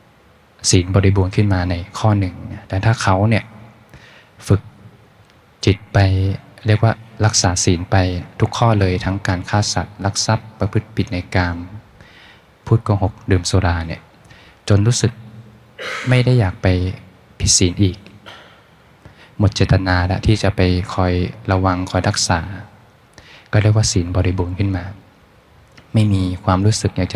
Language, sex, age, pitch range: Thai, male, 20-39, 95-110 Hz